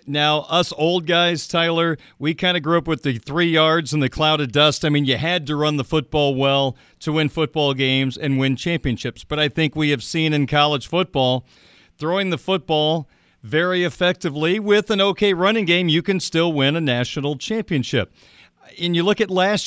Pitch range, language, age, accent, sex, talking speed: 150-180 Hz, English, 40-59, American, male, 200 wpm